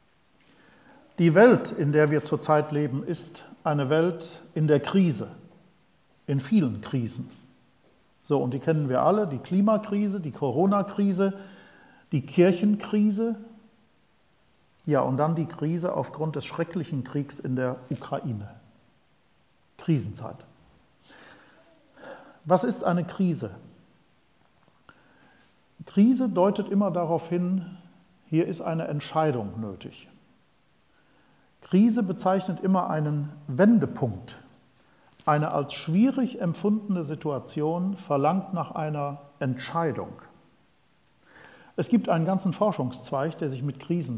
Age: 50-69